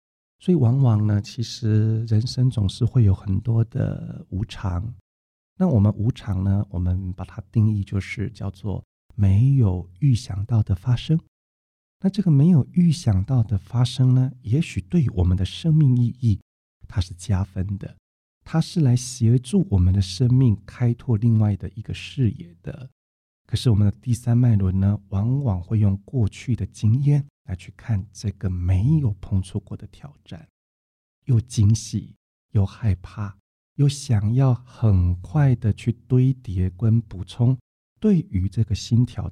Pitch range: 95-120 Hz